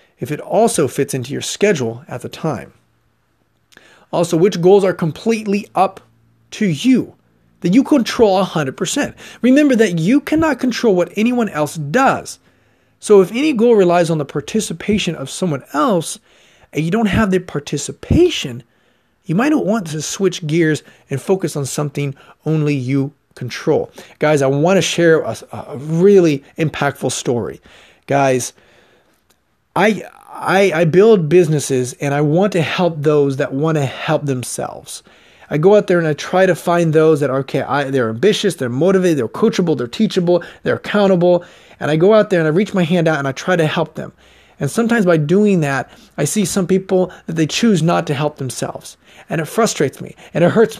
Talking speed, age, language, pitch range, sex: 180 wpm, 40-59, English, 145-195 Hz, male